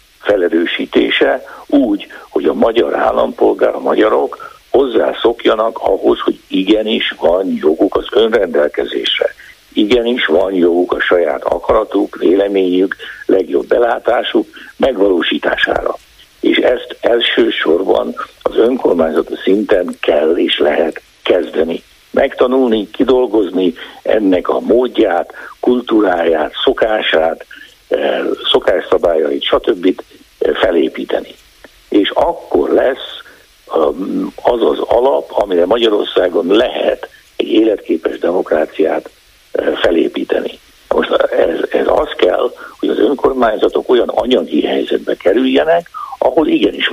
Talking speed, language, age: 95 wpm, Hungarian, 60-79